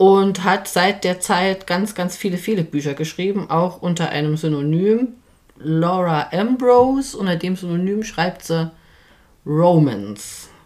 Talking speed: 130 wpm